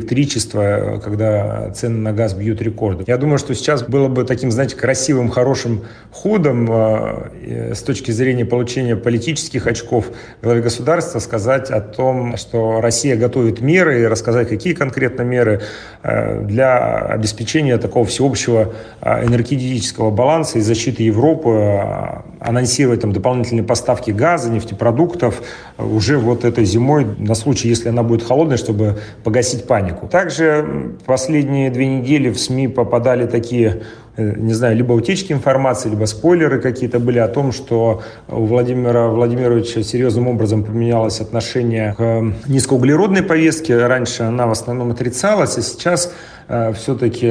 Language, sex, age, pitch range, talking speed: Russian, male, 30-49, 115-130 Hz, 130 wpm